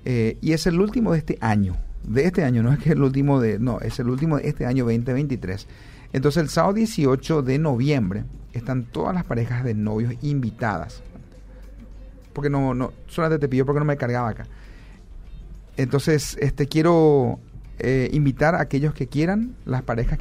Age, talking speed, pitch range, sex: 40-59, 180 wpm, 120-150 Hz, male